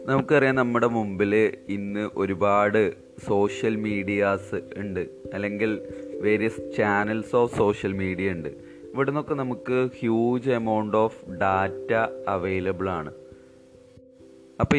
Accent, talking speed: native, 100 wpm